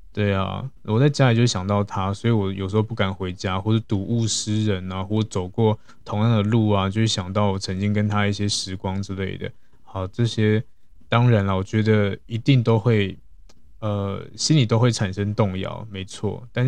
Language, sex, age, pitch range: Chinese, male, 20-39, 100-115 Hz